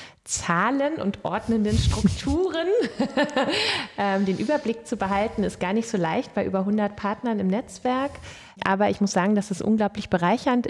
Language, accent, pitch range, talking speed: German, German, 180-215 Hz, 150 wpm